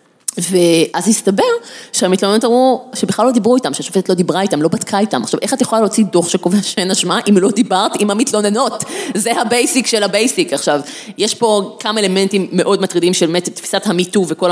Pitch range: 175-240 Hz